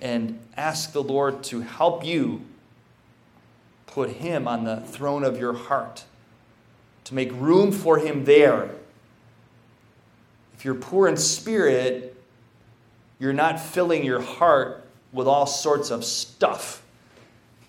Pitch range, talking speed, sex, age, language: 115-145 Hz, 120 wpm, male, 30-49, English